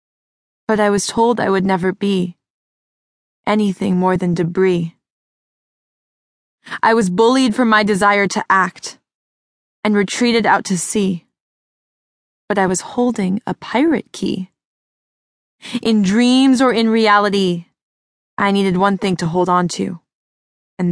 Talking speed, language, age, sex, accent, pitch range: 130 wpm, English, 20-39, female, American, 195-240 Hz